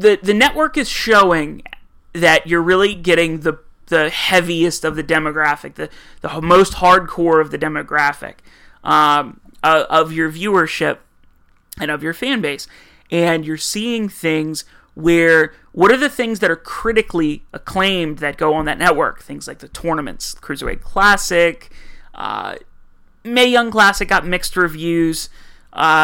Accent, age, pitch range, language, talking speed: American, 30-49, 160-190 Hz, English, 150 wpm